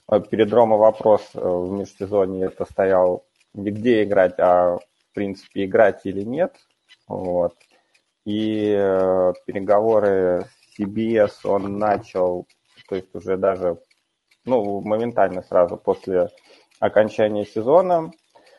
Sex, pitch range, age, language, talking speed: male, 95-110 Hz, 30-49, Russian, 105 wpm